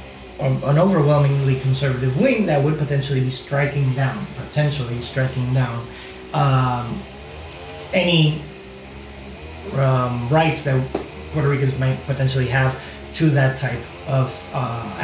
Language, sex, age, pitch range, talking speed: Spanish, male, 30-49, 130-160 Hz, 110 wpm